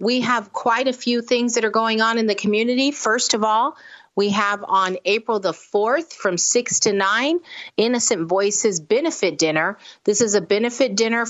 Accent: American